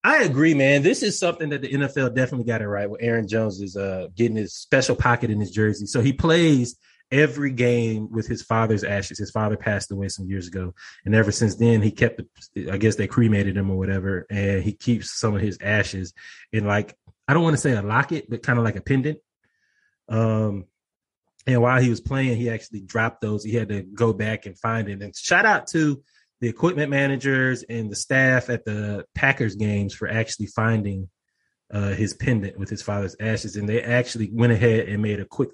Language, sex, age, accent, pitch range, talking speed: English, male, 20-39, American, 100-130 Hz, 215 wpm